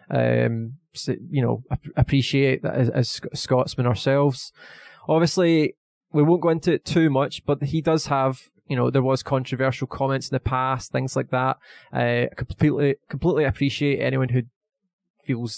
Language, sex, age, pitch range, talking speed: English, male, 20-39, 125-150 Hz, 160 wpm